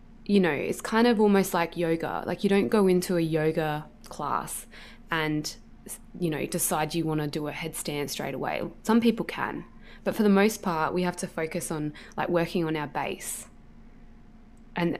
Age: 20-39